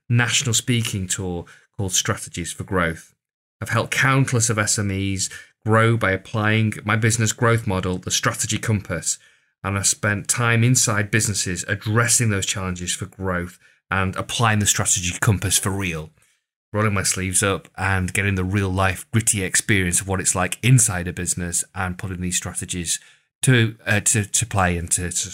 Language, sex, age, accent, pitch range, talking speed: English, male, 30-49, British, 95-115 Hz, 165 wpm